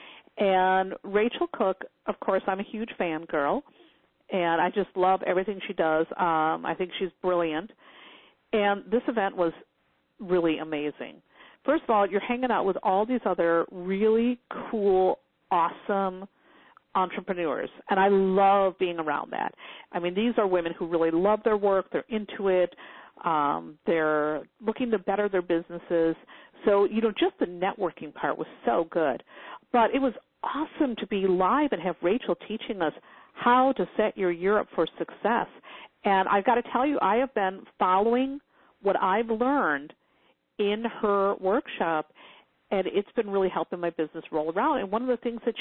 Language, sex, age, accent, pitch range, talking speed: English, female, 50-69, American, 180-235 Hz, 170 wpm